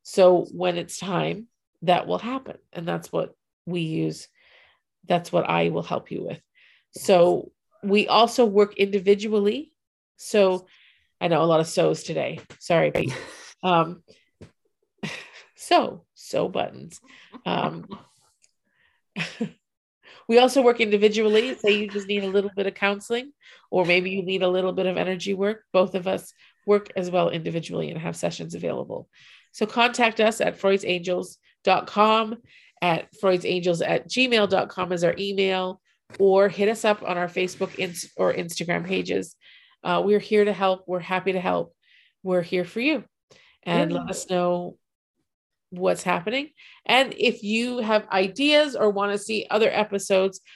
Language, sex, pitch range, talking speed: English, female, 180-220 Hz, 150 wpm